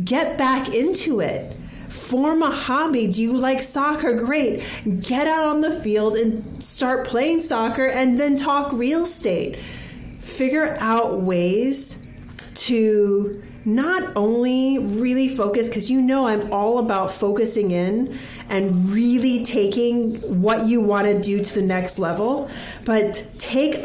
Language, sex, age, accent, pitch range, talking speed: English, female, 30-49, American, 200-260 Hz, 140 wpm